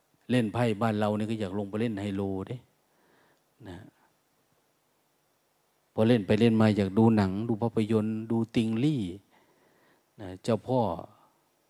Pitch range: 100-125 Hz